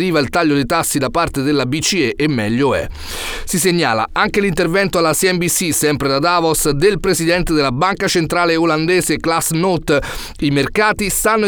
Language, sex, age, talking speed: Italian, male, 30-49, 160 wpm